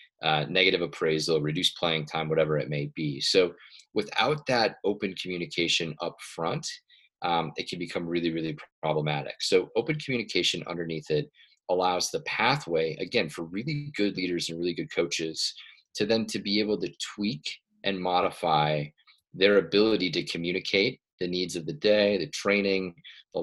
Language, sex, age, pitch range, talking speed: English, male, 30-49, 80-105 Hz, 155 wpm